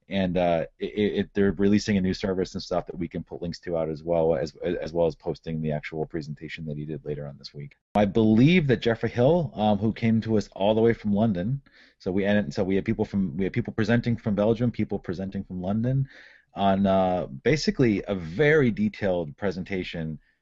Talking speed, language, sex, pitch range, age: 220 wpm, English, male, 80-105 Hz, 30-49